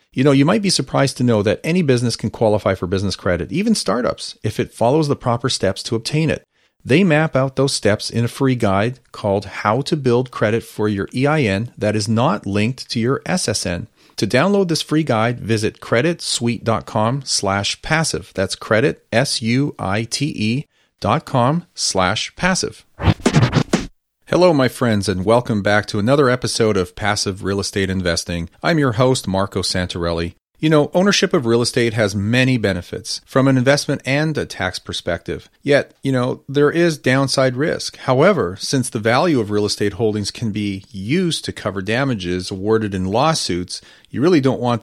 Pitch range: 105-140 Hz